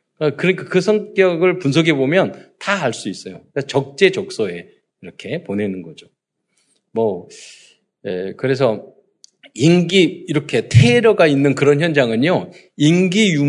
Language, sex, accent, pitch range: Korean, male, native, 125-185 Hz